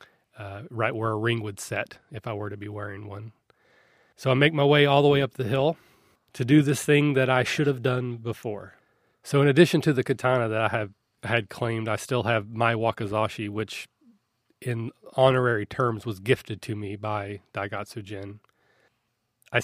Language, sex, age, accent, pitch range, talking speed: English, male, 30-49, American, 105-120 Hz, 195 wpm